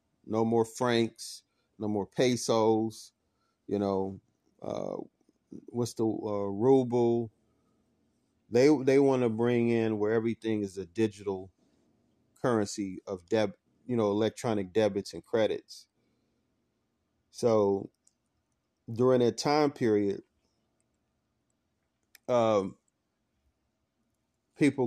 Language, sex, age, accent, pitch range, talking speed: English, male, 30-49, American, 105-120 Hz, 95 wpm